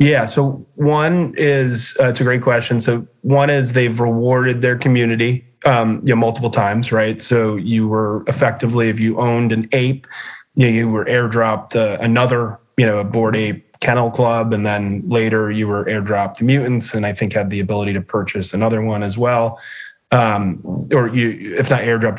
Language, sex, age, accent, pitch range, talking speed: English, male, 30-49, American, 110-130 Hz, 185 wpm